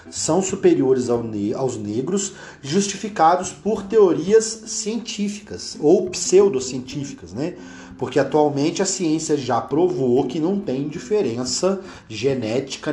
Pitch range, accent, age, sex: 130-195 Hz, Brazilian, 40-59, male